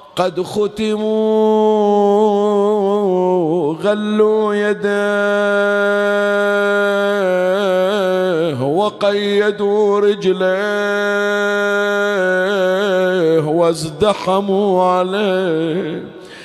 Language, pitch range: Arabic, 200-210 Hz